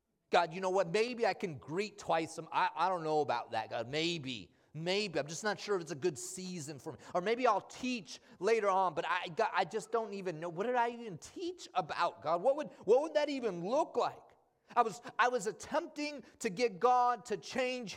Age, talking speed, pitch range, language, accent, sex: 30-49, 225 wpm, 170-240 Hz, English, American, male